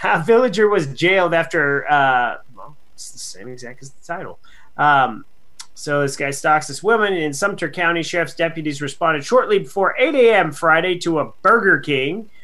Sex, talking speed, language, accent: male, 175 wpm, English, American